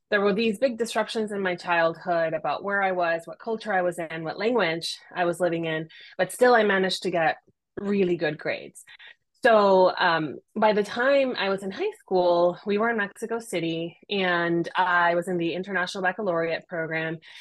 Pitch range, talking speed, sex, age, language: 175-215 Hz, 190 wpm, female, 20-39, English